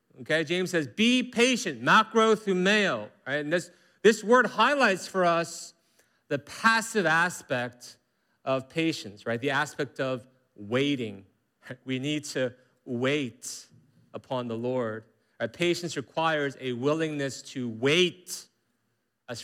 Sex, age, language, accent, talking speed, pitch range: male, 40-59, English, American, 125 wpm, 120-175 Hz